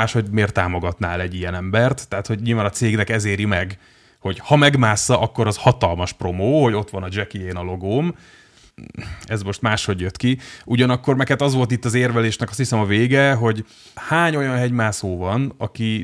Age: 30-49